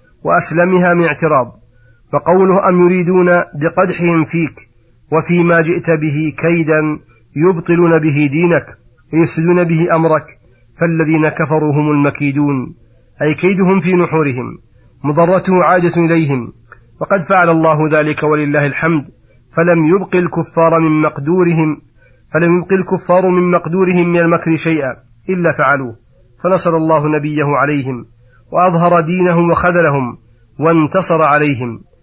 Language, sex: Arabic, male